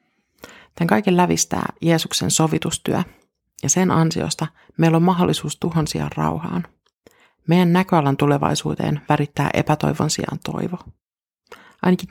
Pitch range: 150-180 Hz